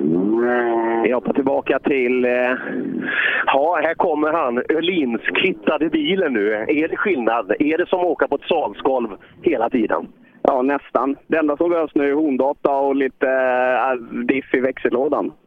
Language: Swedish